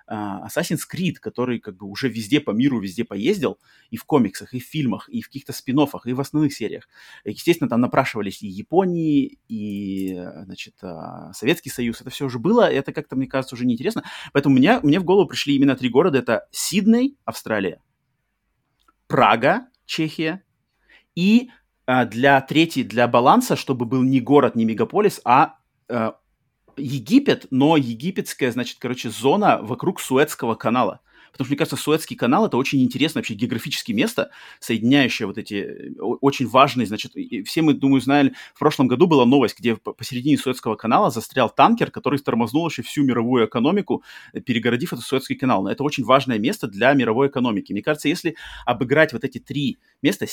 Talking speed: 165 wpm